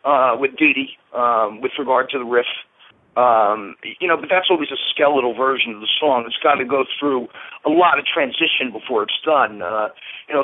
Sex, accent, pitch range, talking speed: male, American, 120-165 Hz, 215 wpm